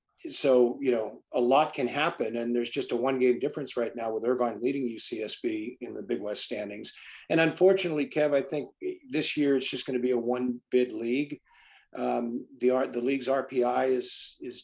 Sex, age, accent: male, 50-69, American